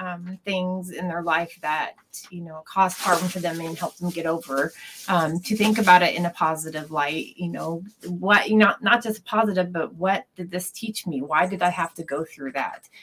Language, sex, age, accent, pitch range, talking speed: English, female, 30-49, American, 165-195 Hz, 210 wpm